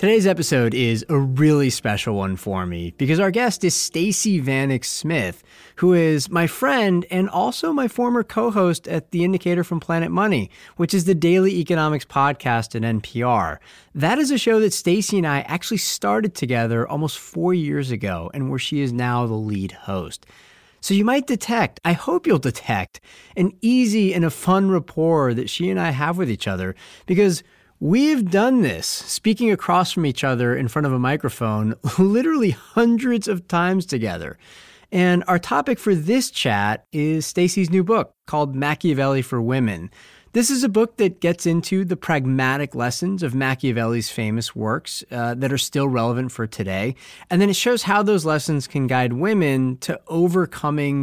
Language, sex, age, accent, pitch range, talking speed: English, male, 30-49, American, 120-190 Hz, 175 wpm